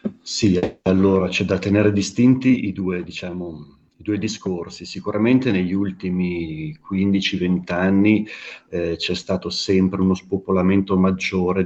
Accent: native